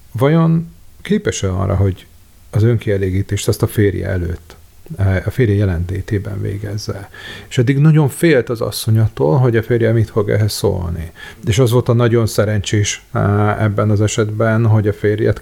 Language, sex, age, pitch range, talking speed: Hungarian, male, 40-59, 100-115 Hz, 150 wpm